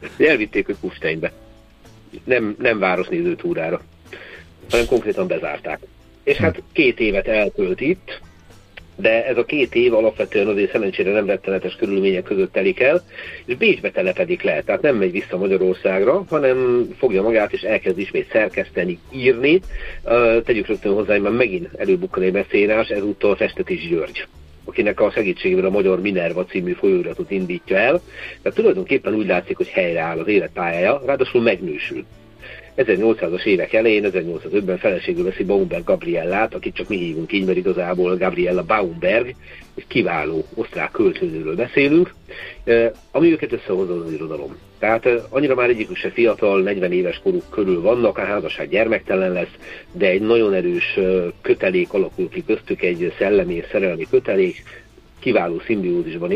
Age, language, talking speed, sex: 50-69, Hungarian, 145 wpm, male